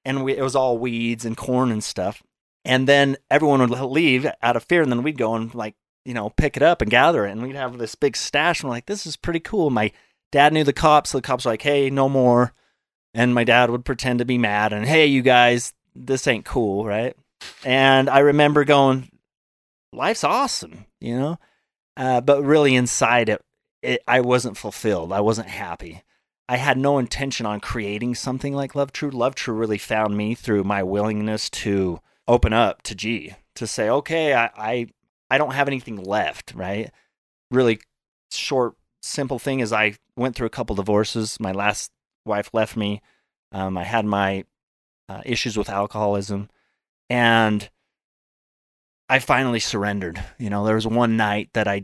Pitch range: 105-135 Hz